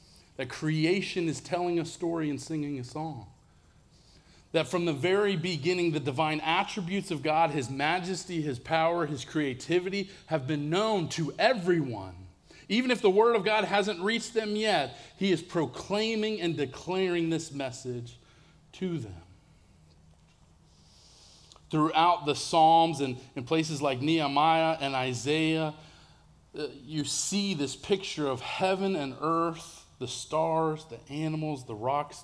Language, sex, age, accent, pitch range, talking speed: English, male, 30-49, American, 135-185 Hz, 140 wpm